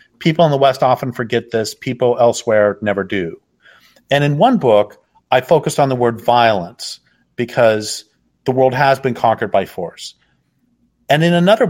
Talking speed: 165 wpm